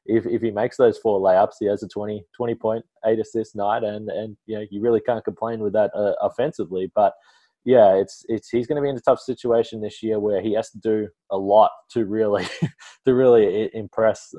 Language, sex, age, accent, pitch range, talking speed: English, male, 20-39, Australian, 100-120 Hz, 220 wpm